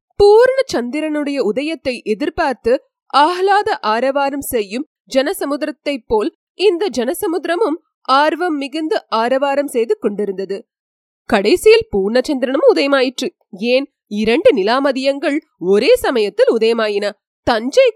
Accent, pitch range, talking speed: native, 245-405 Hz, 65 wpm